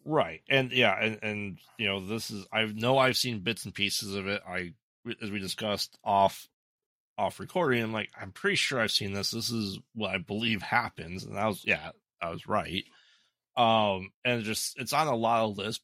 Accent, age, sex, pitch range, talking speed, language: American, 30-49, male, 90-115 Hz, 210 wpm, English